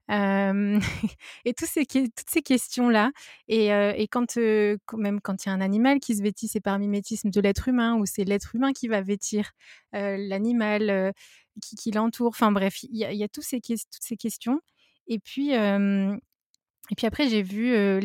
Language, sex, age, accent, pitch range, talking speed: French, female, 20-39, French, 195-230 Hz, 205 wpm